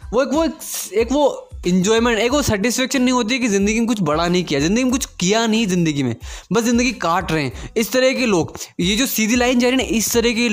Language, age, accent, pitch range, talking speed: Hindi, 20-39, native, 175-225 Hz, 255 wpm